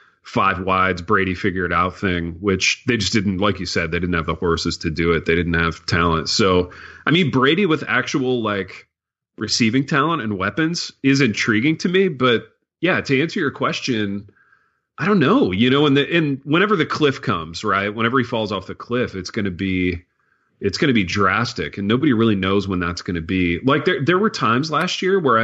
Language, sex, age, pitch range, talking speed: English, male, 30-49, 90-120 Hz, 205 wpm